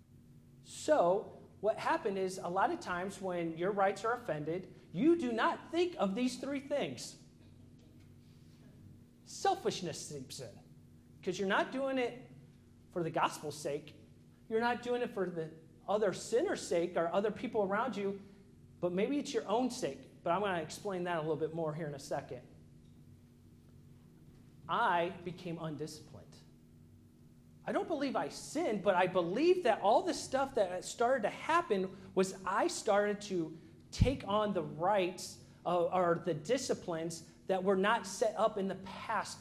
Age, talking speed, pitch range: 40-59, 160 wpm, 170-235 Hz